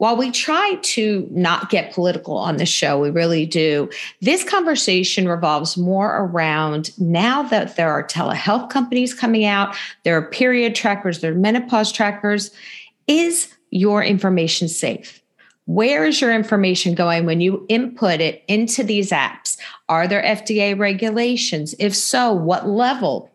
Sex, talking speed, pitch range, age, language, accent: female, 150 wpm, 175-225 Hz, 50-69, English, American